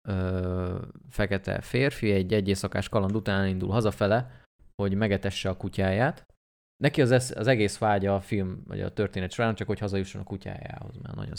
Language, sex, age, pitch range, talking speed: Hungarian, male, 20-39, 95-110 Hz, 175 wpm